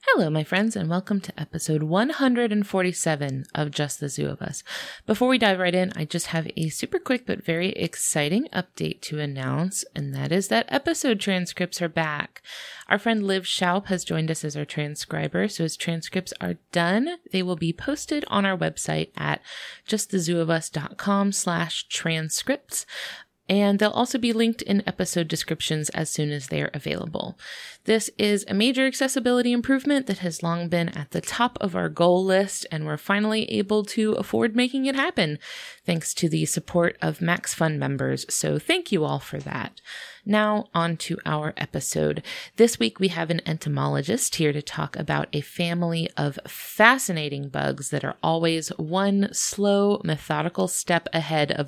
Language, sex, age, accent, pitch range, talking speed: English, female, 30-49, American, 160-215 Hz, 170 wpm